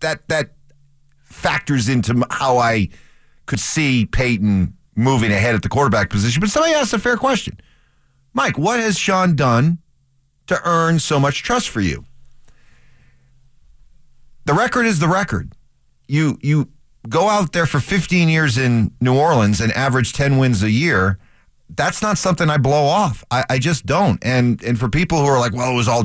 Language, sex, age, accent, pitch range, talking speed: English, male, 40-59, American, 115-155 Hz, 175 wpm